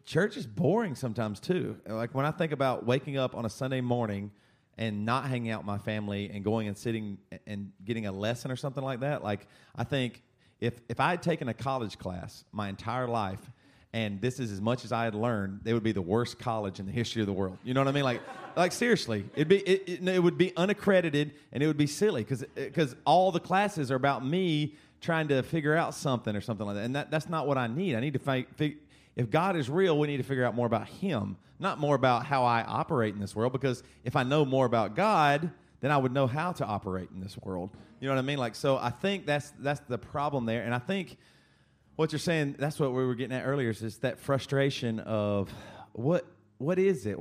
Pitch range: 110-145 Hz